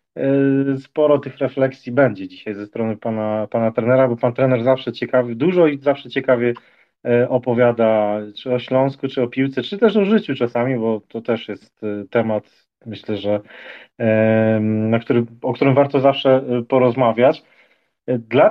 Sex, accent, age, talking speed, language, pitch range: male, native, 40-59, 150 wpm, Polish, 120-140 Hz